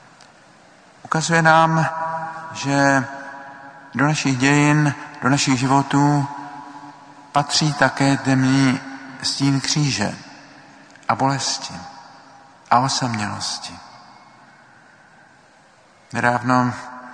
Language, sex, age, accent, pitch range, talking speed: Czech, male, 50-69, native, 115-140 Hz, 65 wpm